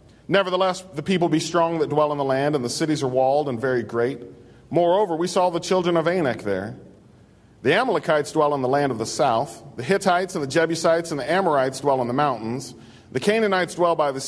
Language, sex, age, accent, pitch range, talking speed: English, male, 40-59, American, 120-155 Hz, 220 wpm